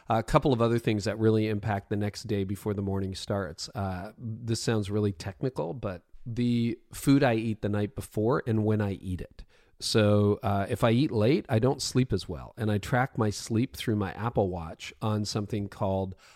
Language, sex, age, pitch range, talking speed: English, male, 40-59, 100-120 Hz, 205 wpm